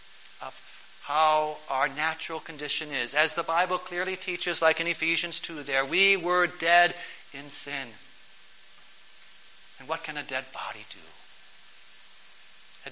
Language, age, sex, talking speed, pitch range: English, 40-59, male, 130 wpm, 150-220 Hz